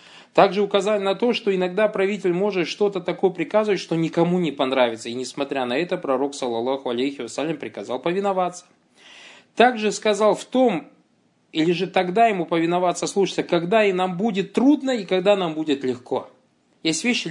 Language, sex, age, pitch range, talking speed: Russian, male, 20-39, 130-185 Hz, 165 wpm